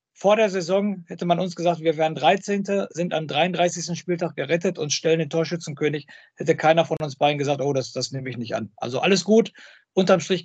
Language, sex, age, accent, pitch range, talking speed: German, male, 50-69, German, 150-180 Hz, 210 wpm